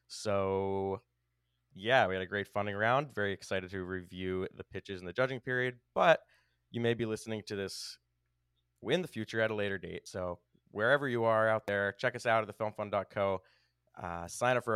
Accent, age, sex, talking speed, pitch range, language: American, 20-39, male, 185 wpm, 90-110 Hz, English